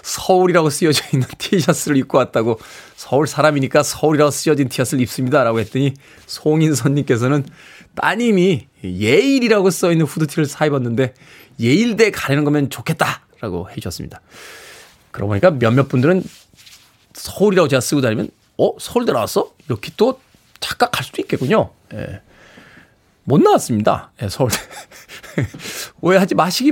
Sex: male